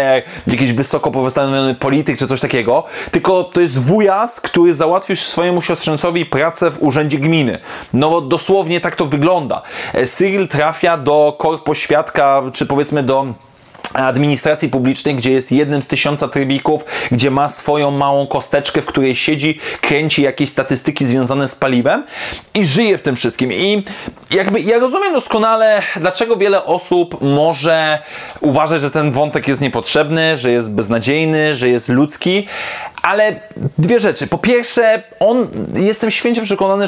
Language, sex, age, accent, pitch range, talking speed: Polish, male, 20-39, native, 140-175 Hz, 150 wpm